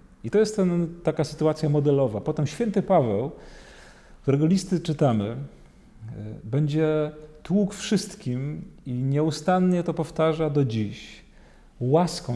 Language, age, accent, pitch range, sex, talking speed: Polish, 40-59, native, 135-175 Hz, male, 110 wpm